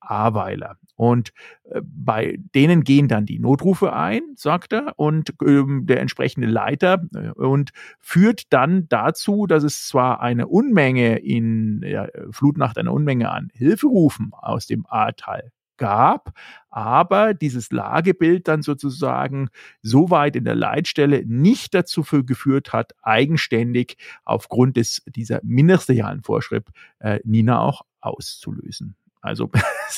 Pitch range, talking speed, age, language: 120-160 Hz, 125 wpm, 50-69, German